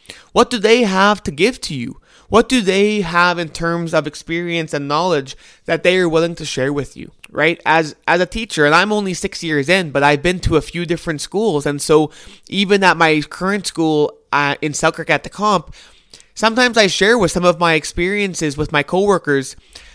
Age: 20-39